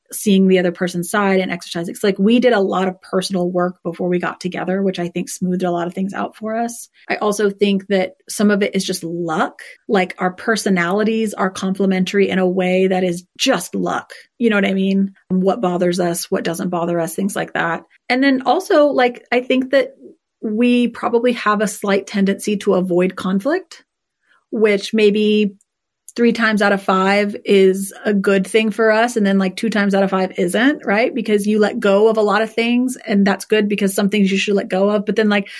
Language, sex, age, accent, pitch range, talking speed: English, female, 30-49, American, 190-220 Hz, 220 wpm